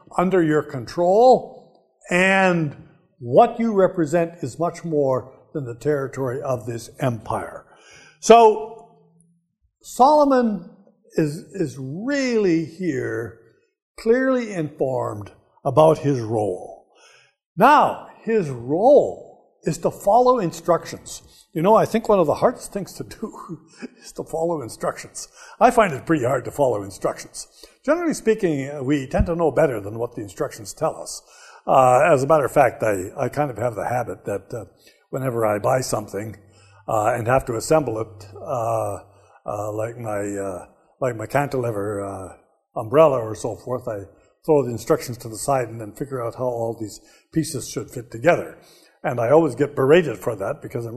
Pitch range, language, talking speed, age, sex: 120-180 Hz, English, 160 wpm, 60-79, male